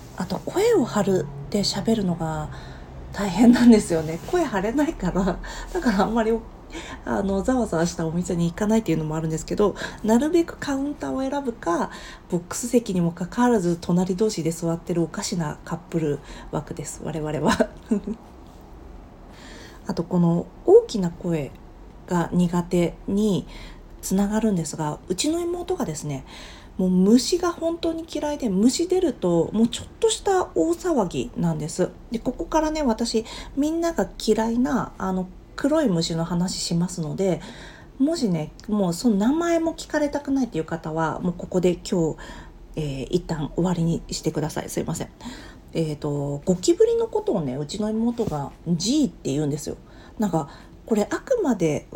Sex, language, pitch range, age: female, Japanese, 165-245 Hz, 40-59